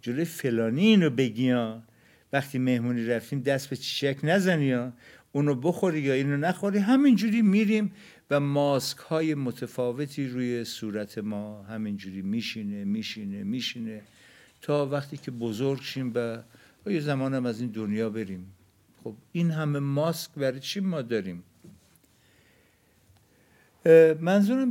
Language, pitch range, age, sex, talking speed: Persian, 110-145 Hz, 60-79, male, 130 wpm